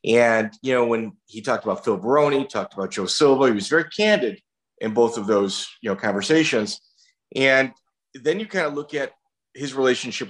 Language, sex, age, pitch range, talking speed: English, male, 40-59, 110-145 Hz, 190 wpm